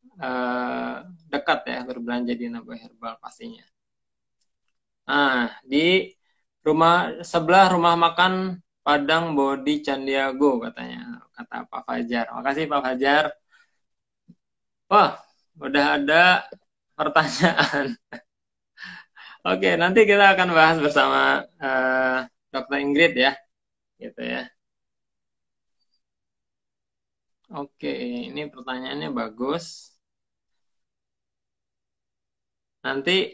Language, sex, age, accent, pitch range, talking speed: Indonesian, male, 20-39, native, 125-170 Hz, 80 wpm